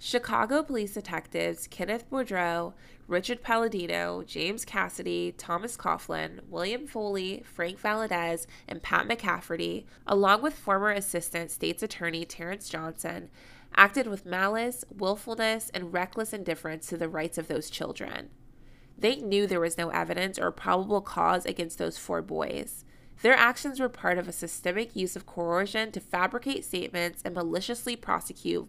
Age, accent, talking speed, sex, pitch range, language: 20-39, American, 140 wpm, female, 170-225 Hz, English